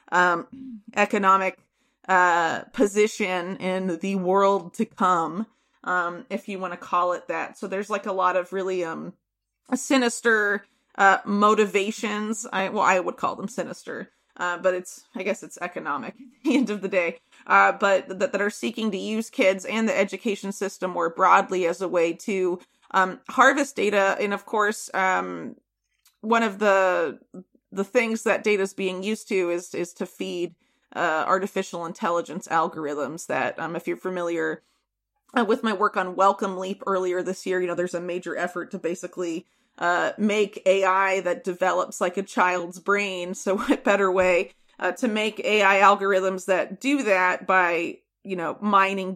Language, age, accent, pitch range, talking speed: English, 30-49, American, 180-210 Hz, 170 wpm